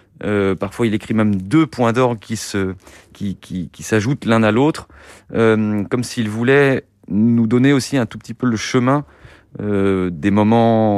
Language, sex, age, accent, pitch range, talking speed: French, male, 40-59, French, 100-130 Hz, 180 wpm